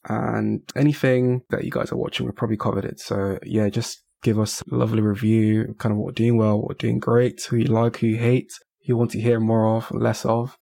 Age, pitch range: 20-39, 110-130 Hz